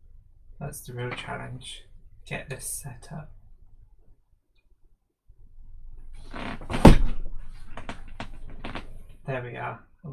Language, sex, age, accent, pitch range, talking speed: English, male, 20-39, British, 110-140 Hz, 85 wpm